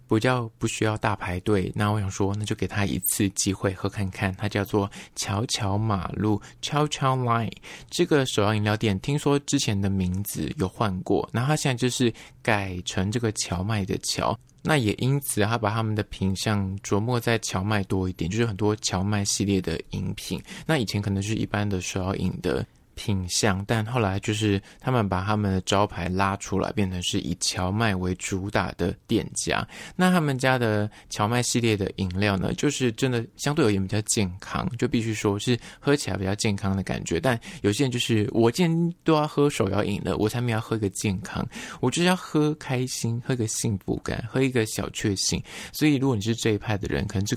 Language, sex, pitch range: Chinese, male, 100-125 Hz